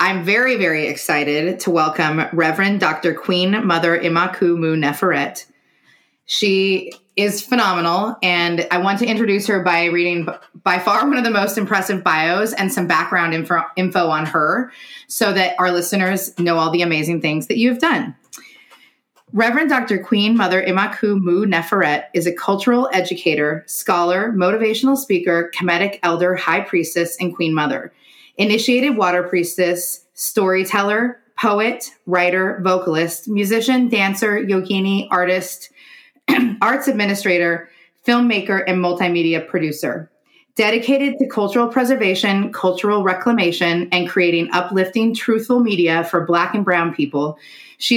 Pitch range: 175-220 Hz